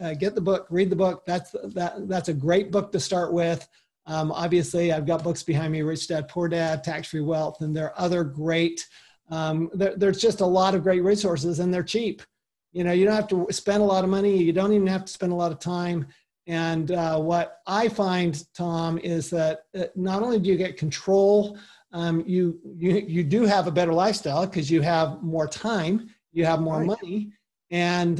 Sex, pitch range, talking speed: male, 165-190 Hz, 215 wpm